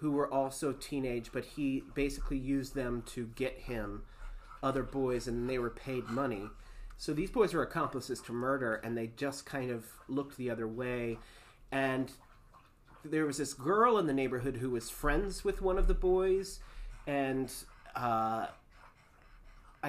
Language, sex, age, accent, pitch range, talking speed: English, male, 30-49, American, 120-150 Hz, 160 wpm